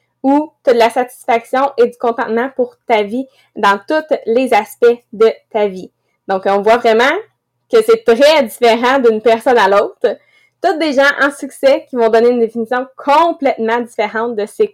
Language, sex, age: English, female, 20-39